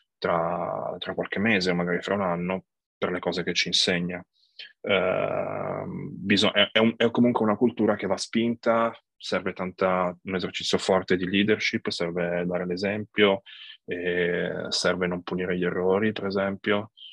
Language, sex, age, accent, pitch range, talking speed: Italian, male, 20-39, native, 90-95 Hz, 155 wpm